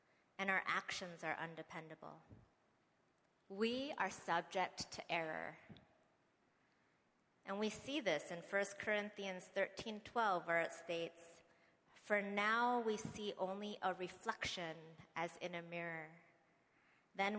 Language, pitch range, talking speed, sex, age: English, 170-215 Hz, 115 wpm, female, 30-49